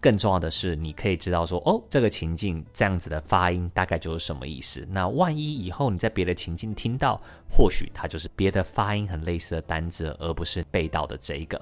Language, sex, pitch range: Chinese, male, 85-105 Hz